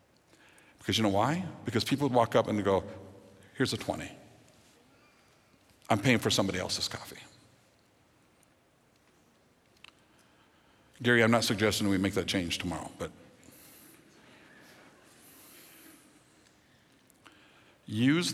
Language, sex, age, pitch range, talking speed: English, male, 60-79, 100-130 Hz, 100 wpm